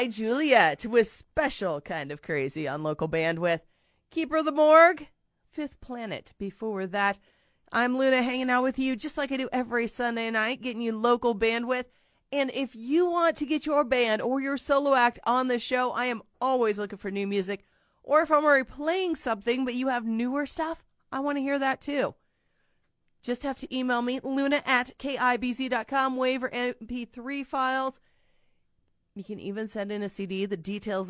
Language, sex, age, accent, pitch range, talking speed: English, female, 30-49, American, 185-255 Hz, 180 wpm